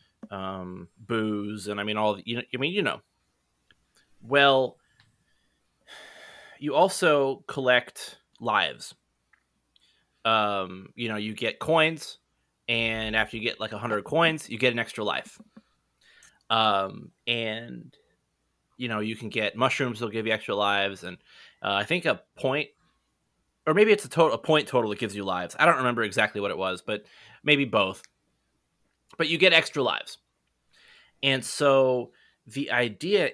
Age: 20-39